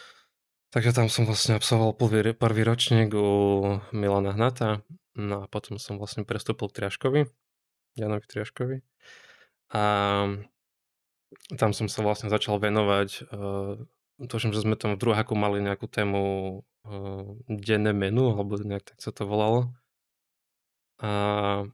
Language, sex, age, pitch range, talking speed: Slovak, male, 20-39, 105-115 Hz, 125 wpm